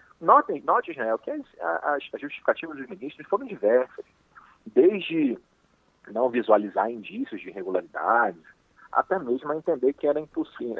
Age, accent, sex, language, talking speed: 40-59, Brazilian, male, Portuguese, 135 wpm